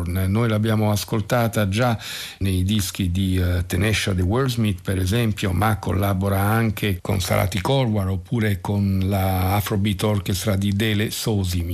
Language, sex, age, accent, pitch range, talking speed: Italian, male, 50-69, native, 95-115 Hz, 140 wpm